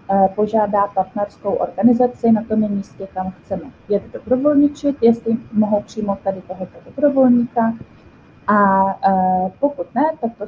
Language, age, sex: Czech, 20-39, female